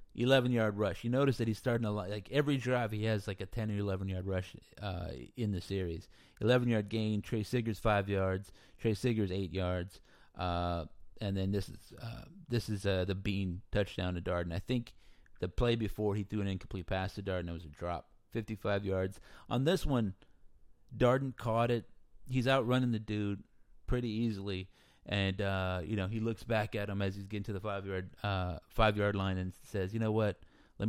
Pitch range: 90-115 Hz